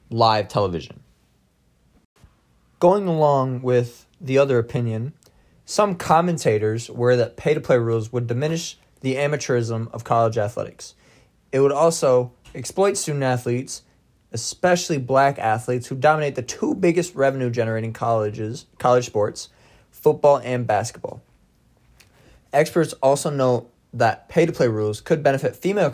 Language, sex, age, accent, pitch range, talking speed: English, male, 20-39, American, 115-145 Hz, 120 wpm